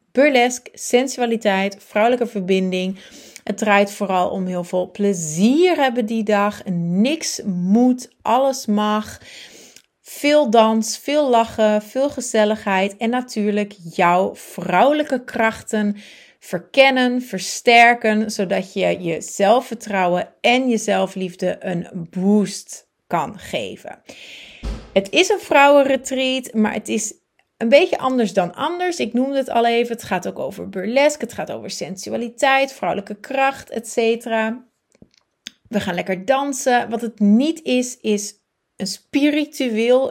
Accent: Dutch